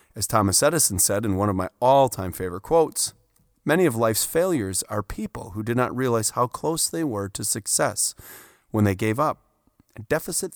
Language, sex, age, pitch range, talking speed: English, male, 30-49, 100-135 Hz, 180 wpm